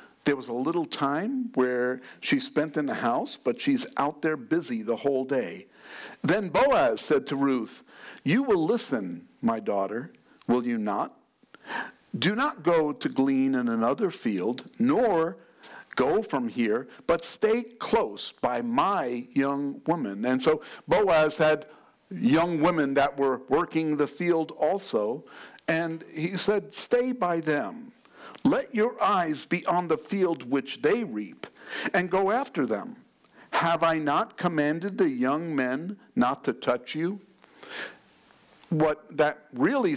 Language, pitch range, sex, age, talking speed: English, 145-210 Hz, male, 50-69, 145 wpm